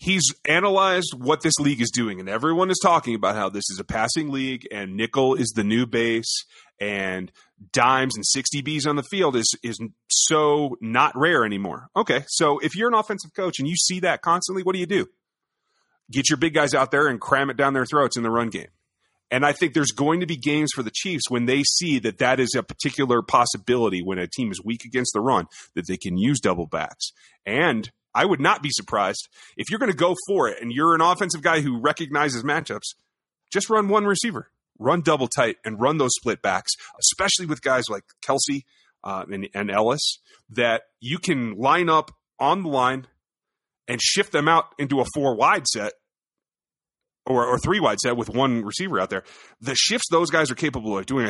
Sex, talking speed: male, 210 wpm